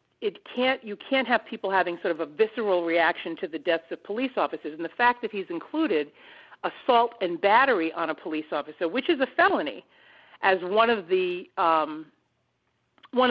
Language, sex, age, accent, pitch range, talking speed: English, female, 50-69, American, 170-245 Hz, 195 wpm